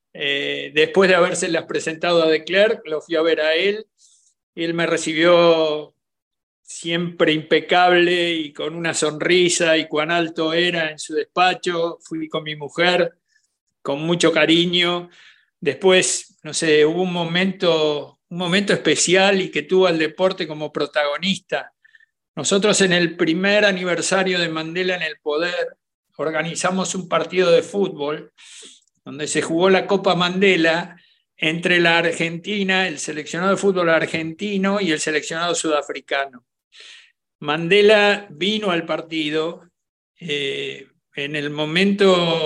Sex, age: male, 50-69